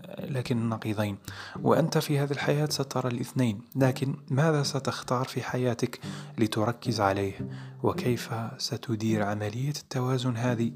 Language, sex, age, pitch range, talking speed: Arabic, male, 20-39, 110-135 Hz, 110 wpm